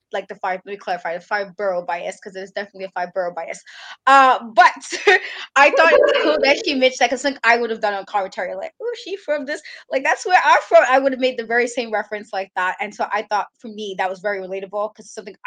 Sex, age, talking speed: female, 20-39, 270 wpm